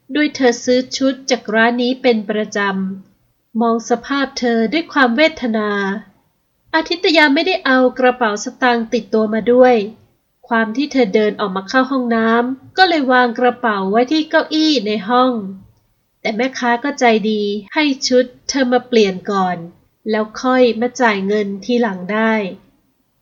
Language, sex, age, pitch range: Thai, female, 20-39, 220-260 Hz